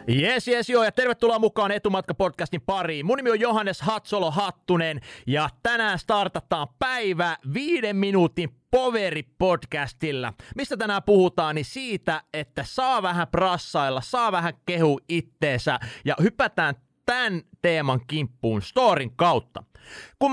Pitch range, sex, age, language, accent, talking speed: 140-205 Hz, male, 30-49, Finnish, native, 125 wpm